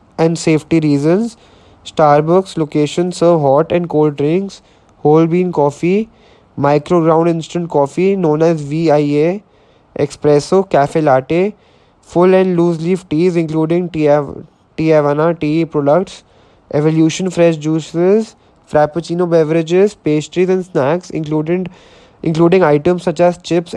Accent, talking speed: Indian, 125 wpm